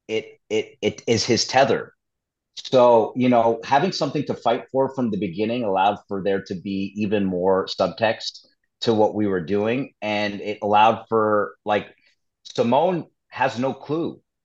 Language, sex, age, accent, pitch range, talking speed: English, male, 30-49, American, 105-130 Hz, 160 wpm